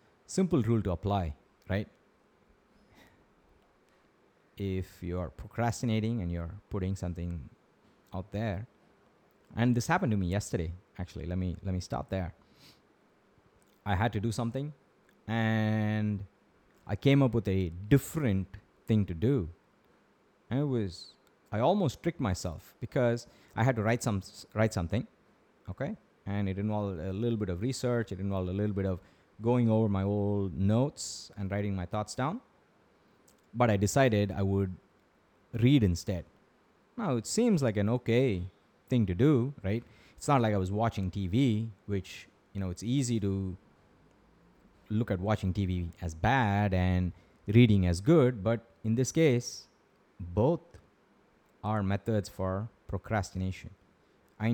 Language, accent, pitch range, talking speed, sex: English, Indian, 95-120 Hz, 145 wpm, male